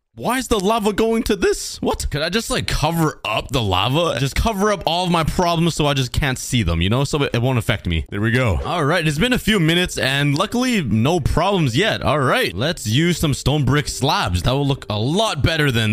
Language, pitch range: English, 110-170 Hz